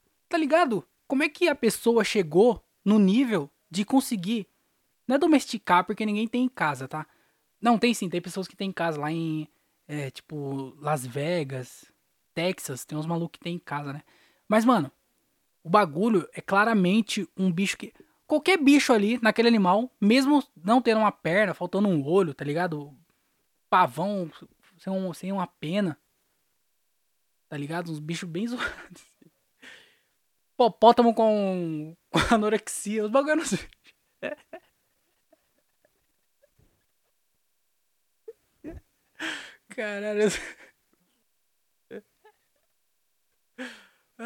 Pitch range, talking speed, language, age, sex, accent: 170-230 Hz, 120 wpm, Portuguese, 20-39, male, Brazilian